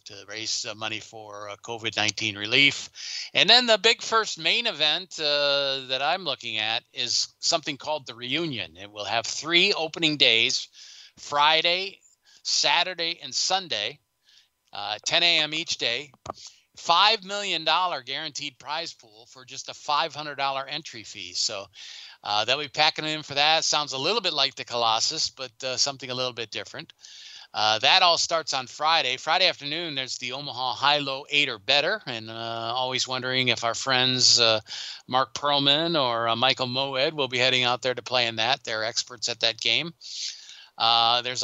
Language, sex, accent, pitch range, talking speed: English, male, American, 115-160 Hz, 175 wpm